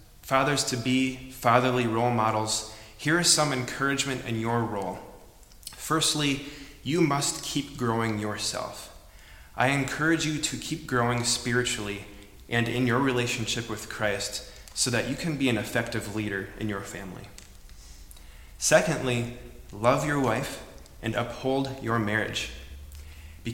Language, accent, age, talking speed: English, American, 20-39, 125 wpm